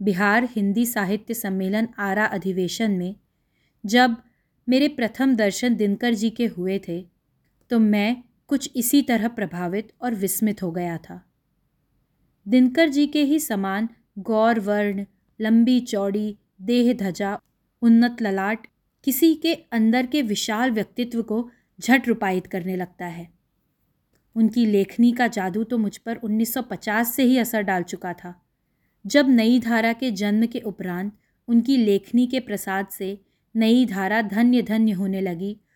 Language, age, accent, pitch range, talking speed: Hindi, 20-39, native, 195-245 Hz, 140 wpm